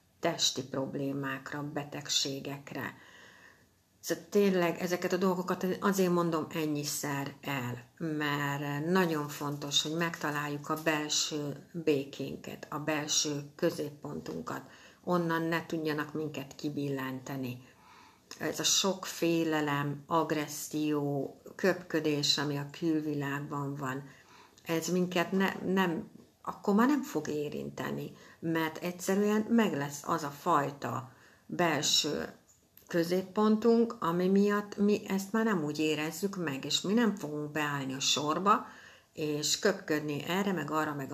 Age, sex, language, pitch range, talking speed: 60-79, female, Hungarian, 145-175 Hz, 115 wpm